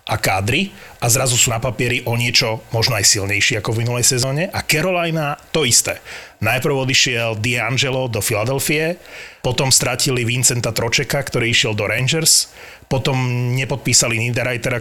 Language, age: Slovak, 30-49